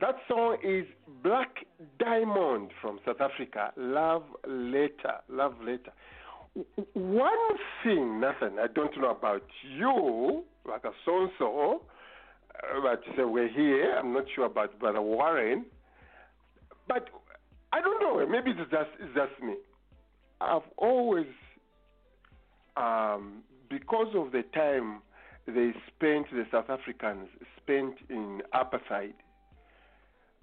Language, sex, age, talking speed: English, male, 50-69, 115 wpm